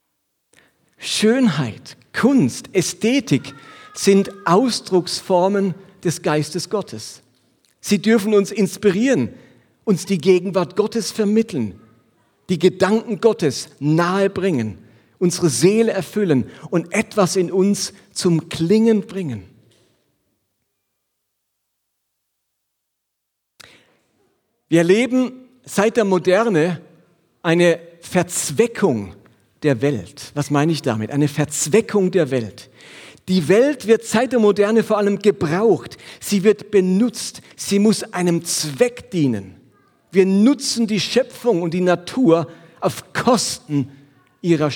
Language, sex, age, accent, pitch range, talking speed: German, male, 50-69, German, 140-210 Hz, 100 wpm